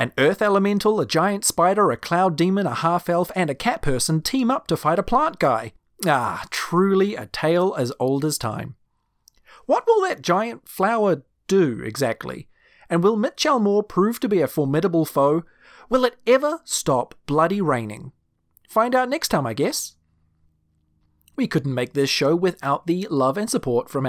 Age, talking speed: 30-49, 175 wpm